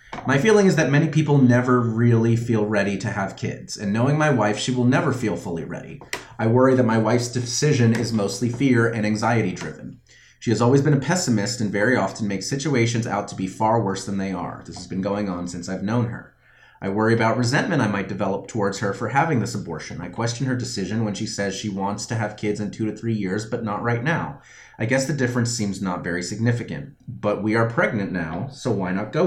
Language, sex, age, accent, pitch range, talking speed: English, male, 30-49, American, 100-125 Hz, 235 wpm